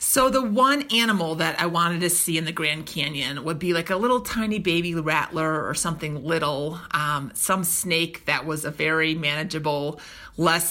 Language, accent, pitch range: English, American, 155-190 Hz